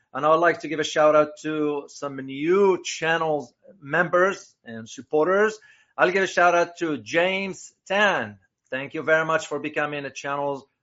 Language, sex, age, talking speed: English, male, 40-59, 165 wpm